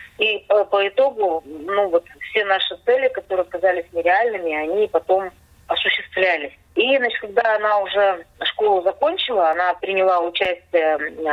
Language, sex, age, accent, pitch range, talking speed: Russian, female, 20-39, native, 170-235 Hz, 125 wpm